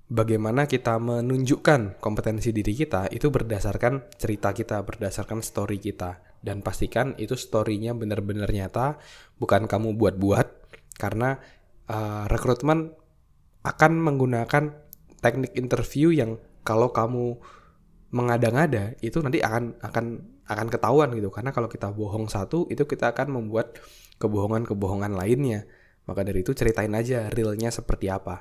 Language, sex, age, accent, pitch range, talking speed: Indonesian, male, 20-39, native, 100-125 Hz, 125 wpm